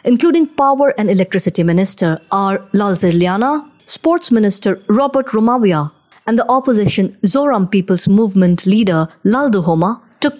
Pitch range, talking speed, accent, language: 185-255 Hz, 120 wpm, Indian, English